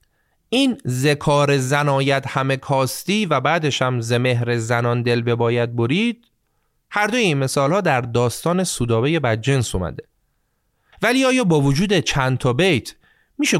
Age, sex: 30-49, male